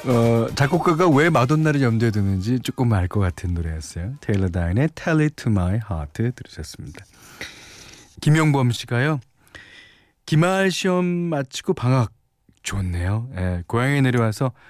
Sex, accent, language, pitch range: male, native, Korean, 100-145 Hz